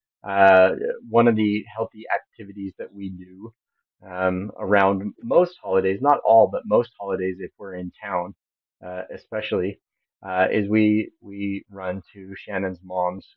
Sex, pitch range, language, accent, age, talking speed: male, 95-110 Hz, English, American, 30-49, 145 wpm